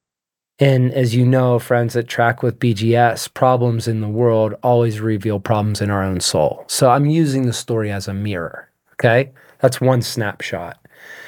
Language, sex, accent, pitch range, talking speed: English, male, American, 110-140 Hz, 170 wpm